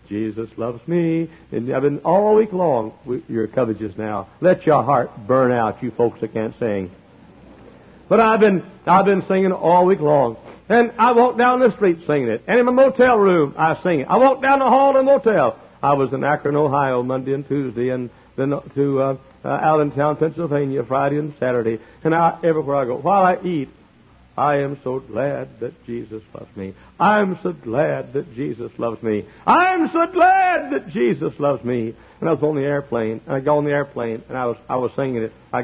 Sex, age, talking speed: male, 60-79, 210 wpm